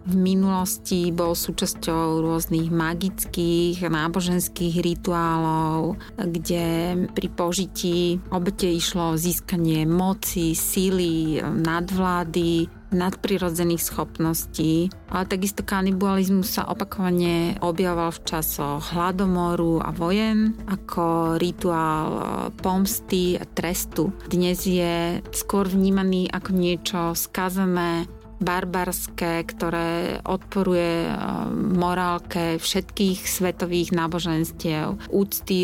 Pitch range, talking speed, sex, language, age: 165-185 Hz, 85 wpm, female, Slovak, 30-49